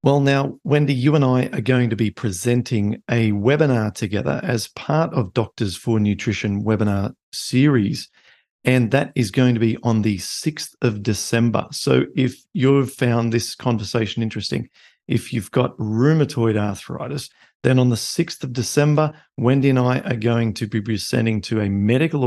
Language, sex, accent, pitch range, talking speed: English, male, Australian, 110-125 Hz, 165 wpm